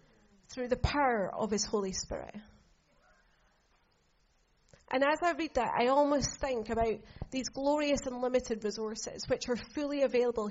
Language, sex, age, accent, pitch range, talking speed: English, female, 30-49, British, 210-255 Hz, 145 wpm